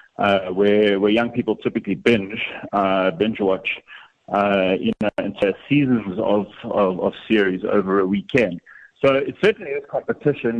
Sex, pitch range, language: male, 100-125 Hz, English